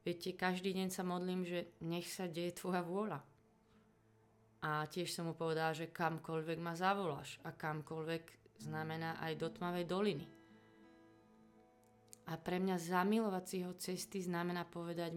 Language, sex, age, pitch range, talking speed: Slovak, female, 30-49, 125-185 Hz, 135 wpm